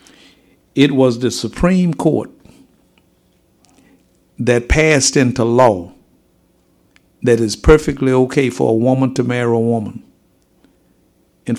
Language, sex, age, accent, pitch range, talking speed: English, male, 60-79, American, 110-135 Hz, 110 wpm